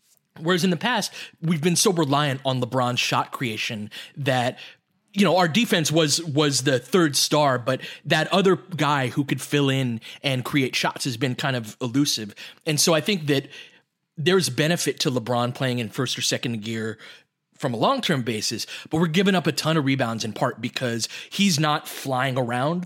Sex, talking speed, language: male, 190 wpm, English